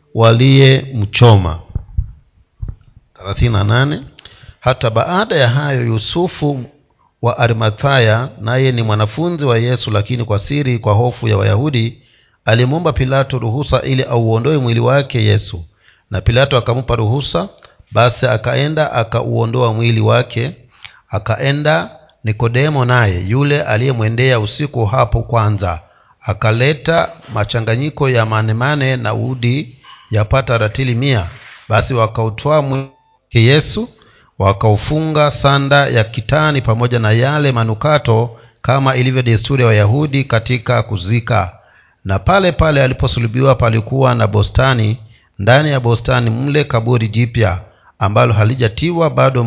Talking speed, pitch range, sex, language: 110 wpm, 110-135 Hz, male, Swahili